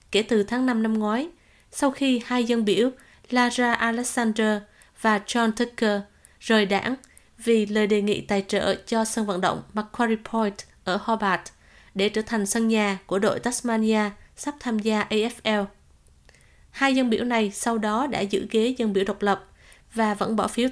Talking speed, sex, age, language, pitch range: 175 wpm, female, 20-39, Vietnamese, 210-245 Hz